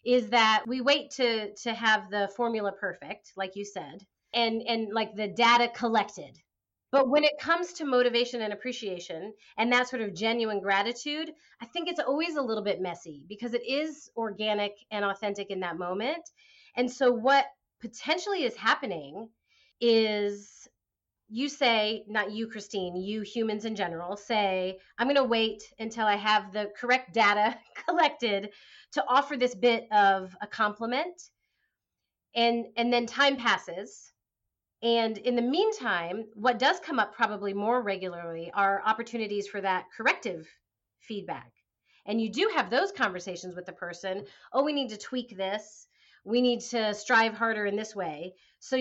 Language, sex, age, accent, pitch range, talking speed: English, female, 30-49, American, 205-250 Hz, 160 wpm